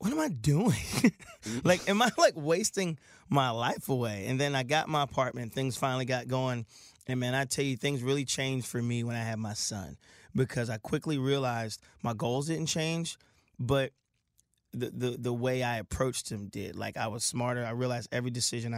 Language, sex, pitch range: English, male, 110-130 Hz